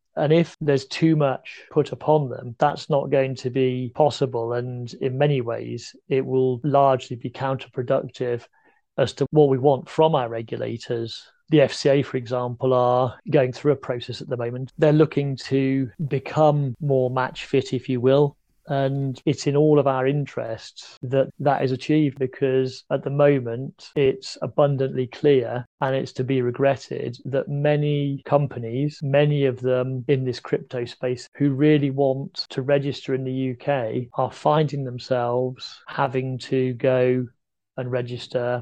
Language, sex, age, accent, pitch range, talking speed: English, male, 30-49, British, 125-145 Hz, 160 wpm